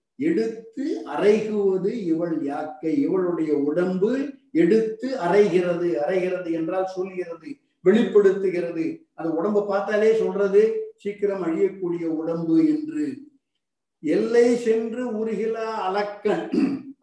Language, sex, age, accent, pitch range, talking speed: Tamil, male, 50-69, native, 175-230 Hz, 85 wpm